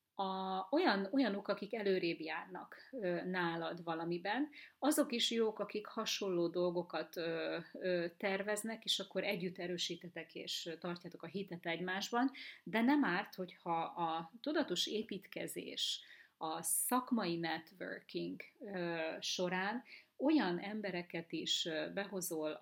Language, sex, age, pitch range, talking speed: Hungarian, female, 30-49, 170-210 Hz, 115 wpm